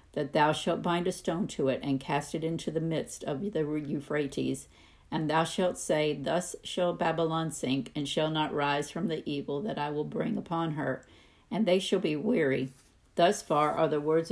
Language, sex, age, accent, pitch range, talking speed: English, female, 50-69, American, 145-170 Hz, 200 wpm